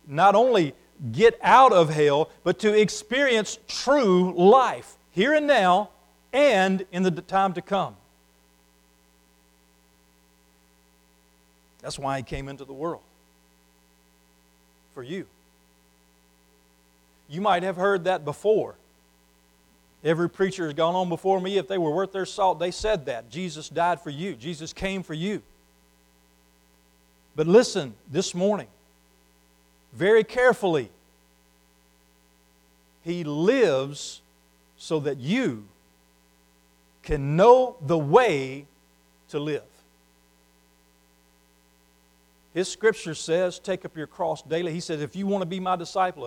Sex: male